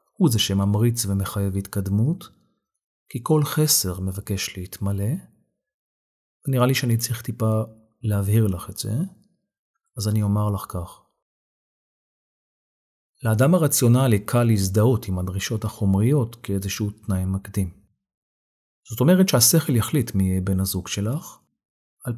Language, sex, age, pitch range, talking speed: Hebrew, male, 40-59, 100-140 Hz, 120 wpm